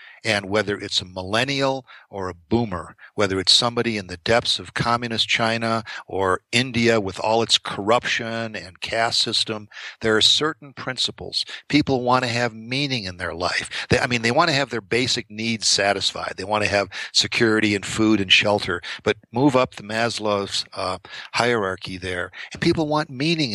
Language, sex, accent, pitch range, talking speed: English, male, American, 100-130 Hz, 175 wpm